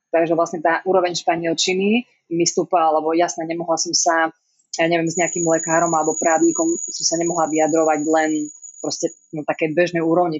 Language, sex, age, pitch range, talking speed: Slovak, female, 20-39, 155-170 Hz, 165 wpm